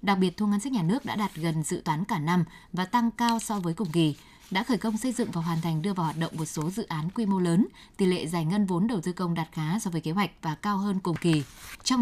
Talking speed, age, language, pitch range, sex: 300 wpm, 20-39, Vietnamese, 170-230 Hz, female